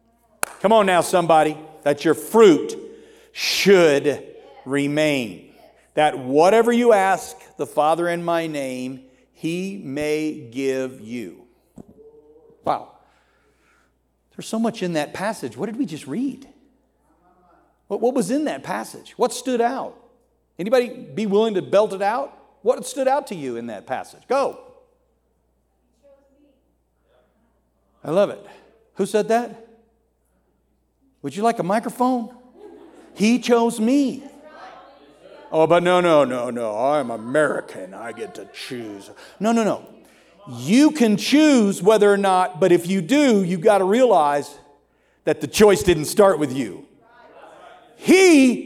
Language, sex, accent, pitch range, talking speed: English, male, American, 165-260 Hz, 135 wpm